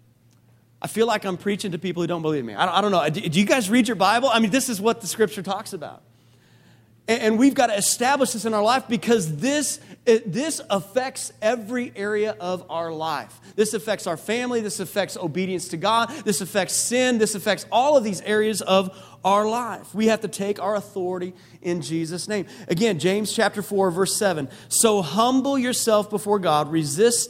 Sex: male